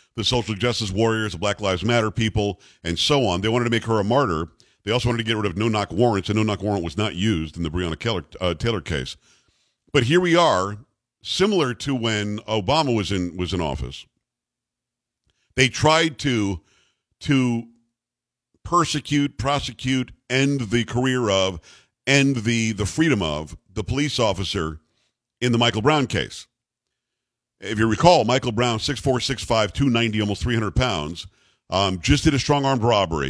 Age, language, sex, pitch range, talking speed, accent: 50-69, English, male, 105-130 Hz, 175 wpm, American